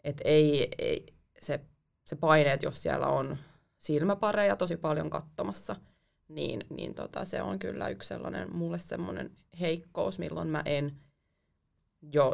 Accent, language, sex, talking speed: native, Finnish, female, 140 wpm